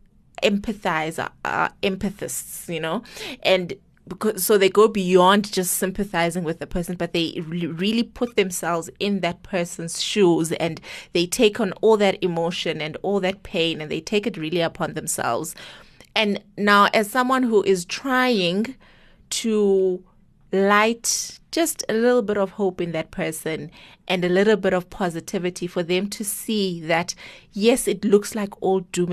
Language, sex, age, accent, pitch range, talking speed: English, female, 20-39, South African, 175-220 Hz, 165 wpm